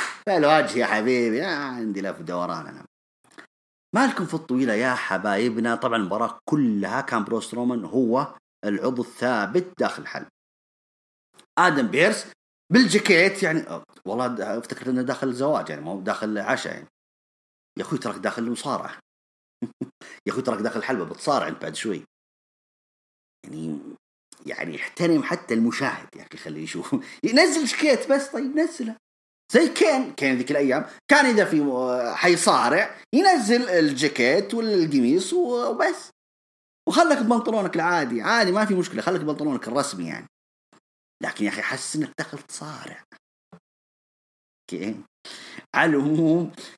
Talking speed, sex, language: 125 wpm, male, English